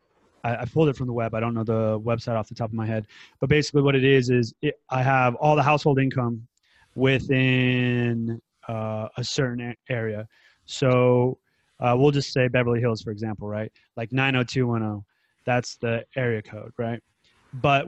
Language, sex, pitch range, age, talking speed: English, male, 115-130 Hz, 30-49, 175 wpm